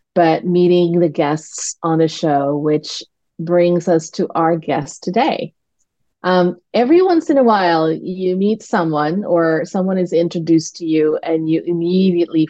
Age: 30-49